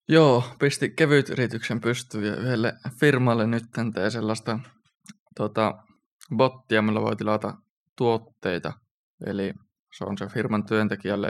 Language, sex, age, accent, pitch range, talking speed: Finnish, male, 20-39, native, 100-115 Hz, 115 wpm